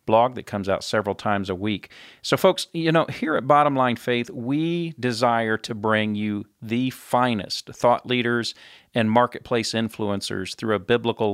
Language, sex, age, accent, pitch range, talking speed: English, male, 40-59, American, 105-125 Hz, 170 wpm